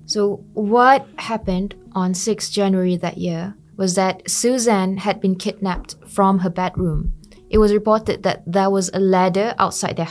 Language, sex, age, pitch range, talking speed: English, female, 20-39, 180-210 Hz, 160 wpm